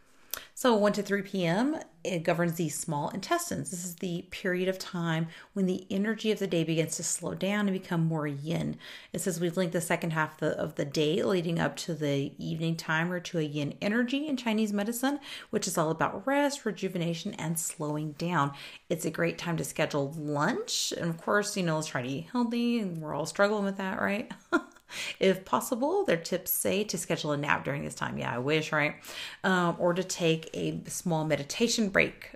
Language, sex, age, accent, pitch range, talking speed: English, female, 30-49, American, 160-200 Hz, 210 wpm